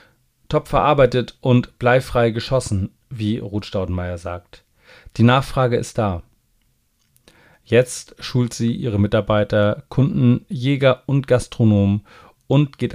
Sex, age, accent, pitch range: male, 40-59, German, 110-130 Hz